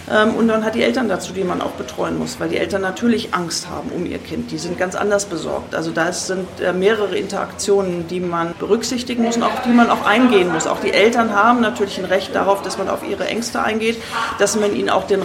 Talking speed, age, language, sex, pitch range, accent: 235 wpm, 40-59, German, female, 180-220 Hz, German